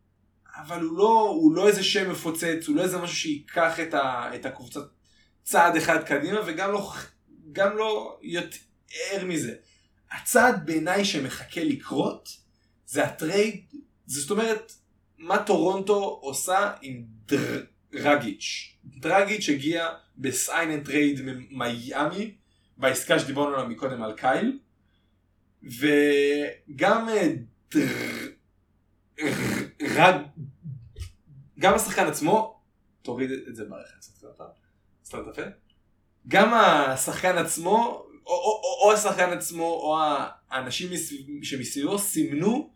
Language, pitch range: Hebrew, 135-195 Hz